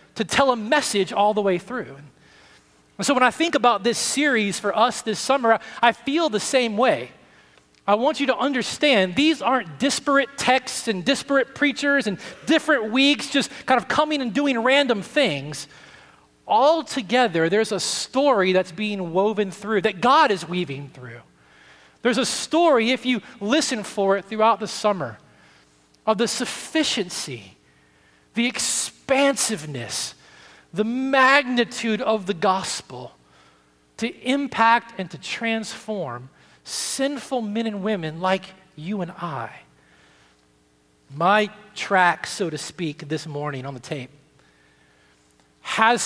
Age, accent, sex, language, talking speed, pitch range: 30-49, American, male, English, 140 wpm, 155-245 Hz